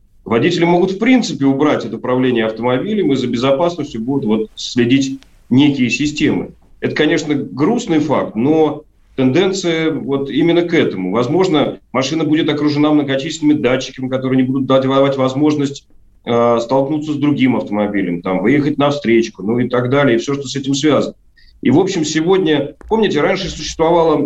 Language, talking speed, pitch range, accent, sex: Russian, 155 wpm, 120-160 Hz, native, male